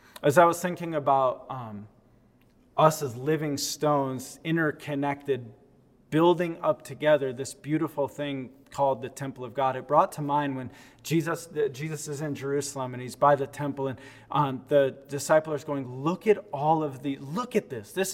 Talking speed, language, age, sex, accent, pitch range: 170 wpm, English, 20-39, male, American, 135-175 Hz